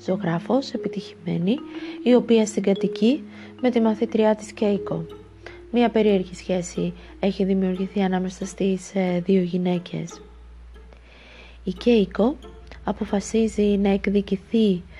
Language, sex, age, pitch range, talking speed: Greek, female, 20-39, 180-235 Hz, 95 wpm